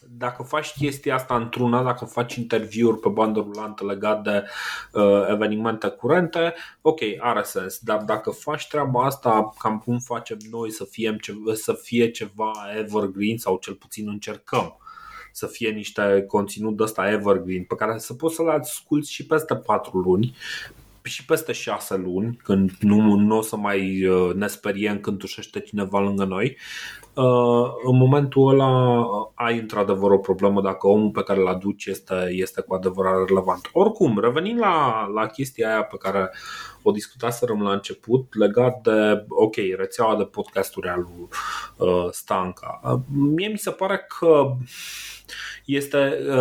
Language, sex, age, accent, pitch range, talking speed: Romanian, male, 20-39, native, 100-125 Hz, 150 wpm